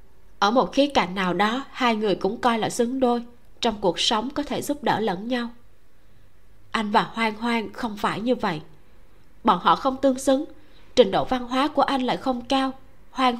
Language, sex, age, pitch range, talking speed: Vietnamese, female, 20-39, 185-245 Hz, 200 wpm